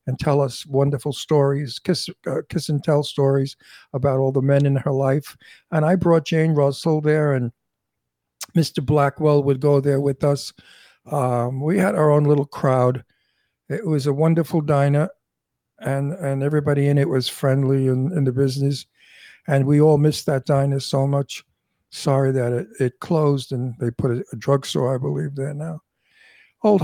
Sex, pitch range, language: male, 135-160 Hz, English